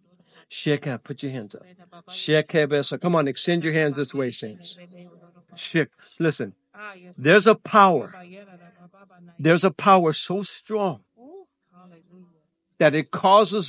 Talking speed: 120 wpm